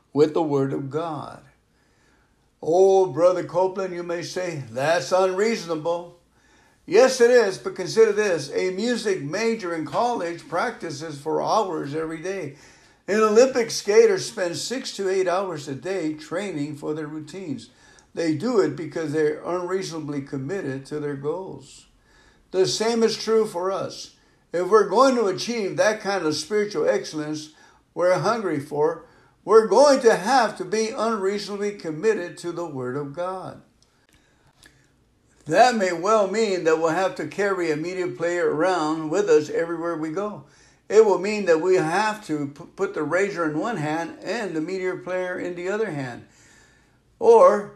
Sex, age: male, 60-79